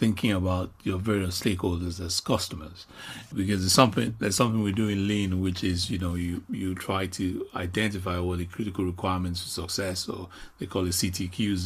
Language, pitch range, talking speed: English, 90-115 Hz, 185 wpm